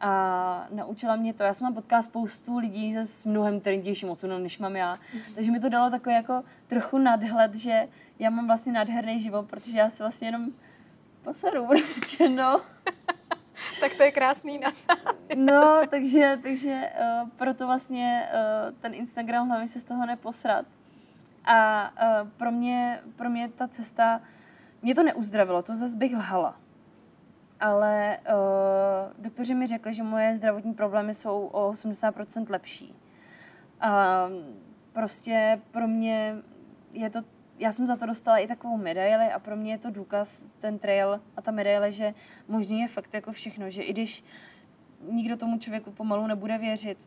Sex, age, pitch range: female, 20-39, 210-240 Hz